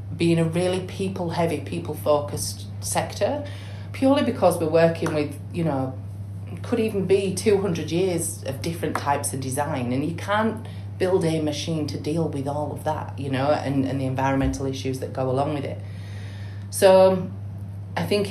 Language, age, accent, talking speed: English, 30-49, British, 165 wpm